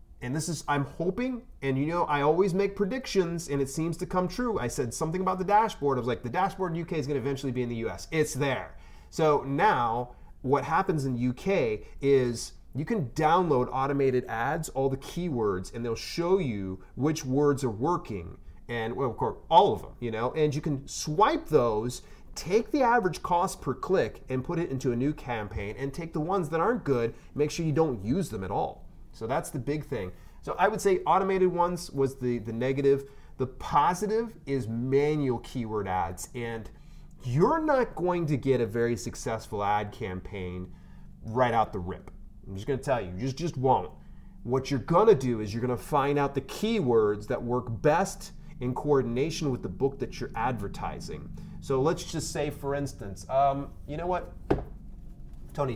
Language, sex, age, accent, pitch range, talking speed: English, male, 30-49, American, 120-165 Hz, 200 wpm